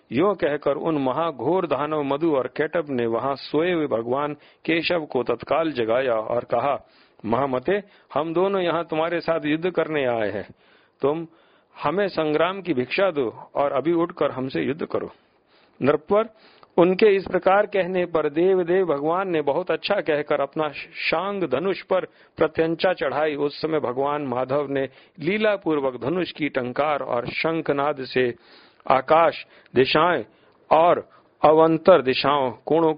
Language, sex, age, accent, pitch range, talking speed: Hindi, male, 50-69, native, 135-170 Hz, 140 wpm